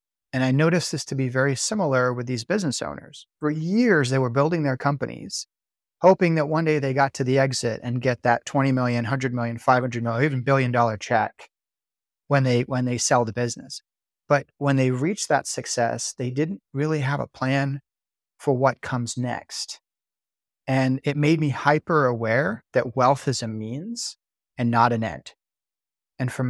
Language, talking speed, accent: English, 185 wpm, American